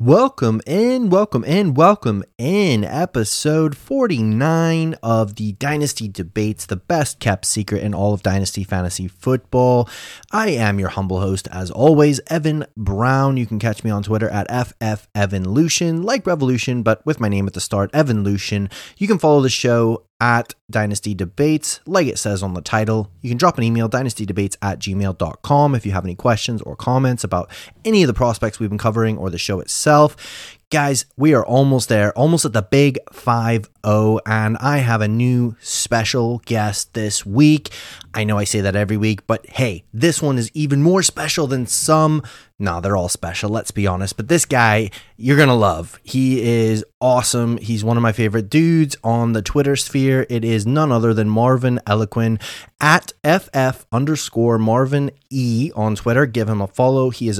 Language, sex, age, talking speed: English, male, 30-49, 185 wpm